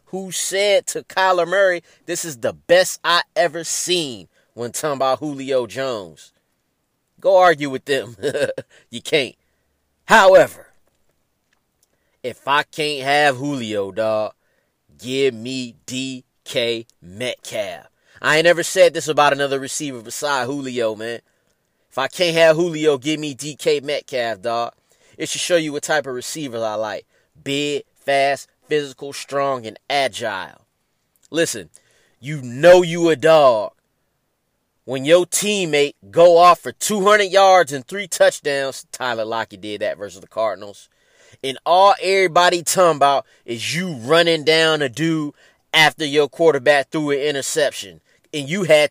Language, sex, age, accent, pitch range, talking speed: English, male, 30-49, American, 130-175 Hz, 140 wpm